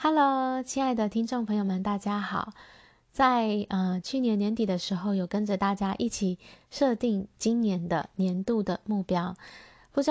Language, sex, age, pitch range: Chinese, female, 20-39, 180-225 Hz